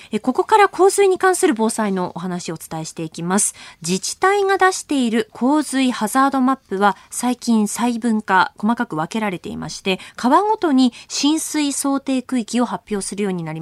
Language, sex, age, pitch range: Japanese, female, 20-39, 190-275 Hz